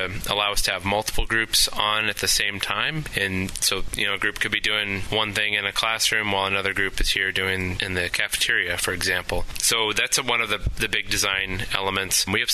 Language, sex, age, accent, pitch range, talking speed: English, male, 20-39, American, 95-110 Hz, 230 wpm